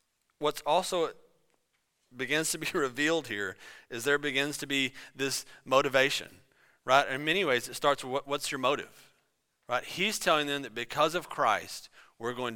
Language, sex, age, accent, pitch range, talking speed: English, male, 30-49, American, 130-190 Hz, 160 wpm